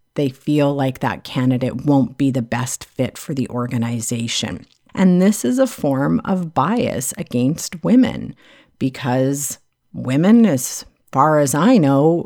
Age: 50-69